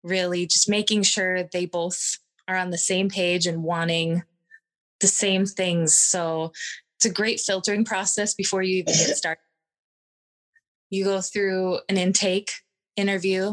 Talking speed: 140 wpm